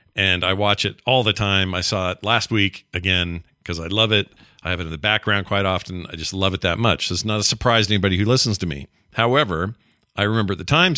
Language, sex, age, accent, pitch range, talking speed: English, male, 40-59, American, 100-135 Hz, 260 wpm